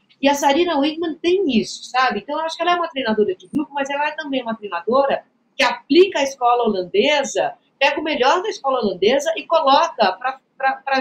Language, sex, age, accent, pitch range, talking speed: Portuguese, female, 50-69, Brazilian, 235-330 Hz, 200 wpm